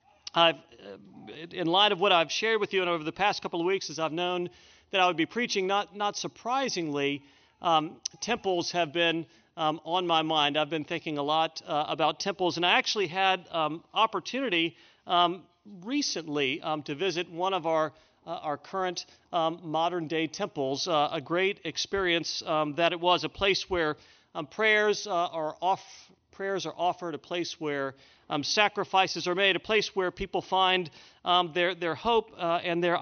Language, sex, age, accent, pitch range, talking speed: English, male, 40-59, American, 160-195 Hz, 180 wpm